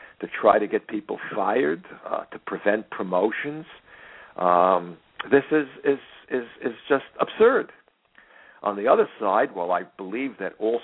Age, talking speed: 60-79, 150 wpm